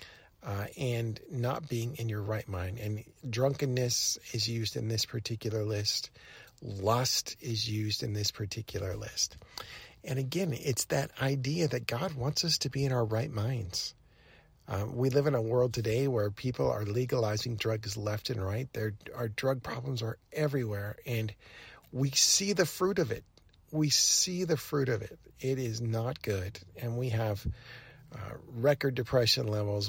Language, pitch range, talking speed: English, 105-130 Hz, 165 wpm